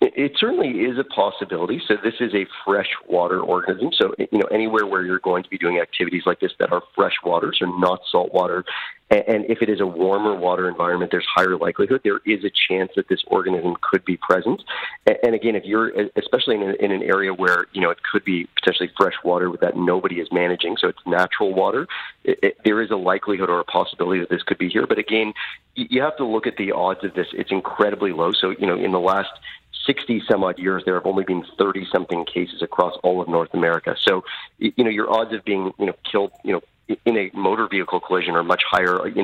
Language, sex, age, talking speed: English, male, 40-59, 230 wpm